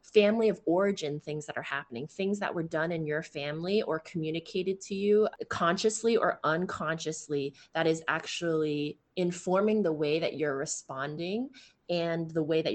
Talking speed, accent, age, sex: 160 wpm, American, 20-39, female